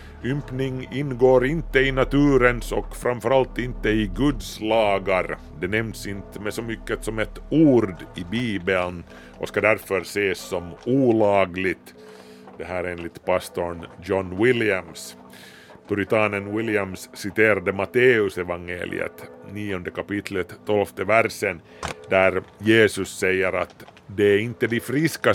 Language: Swedish